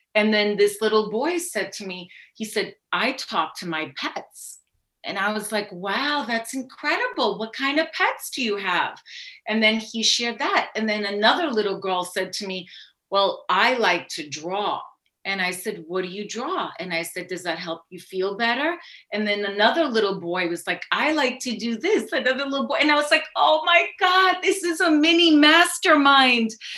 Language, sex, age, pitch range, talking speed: English, female, 30-49, 205-275 Hz, 200 wpm